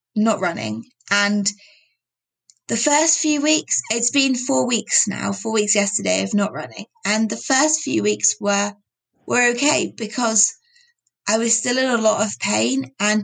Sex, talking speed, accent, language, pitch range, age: female, 165 wpm, British, English, 205-245 Hz, 20-39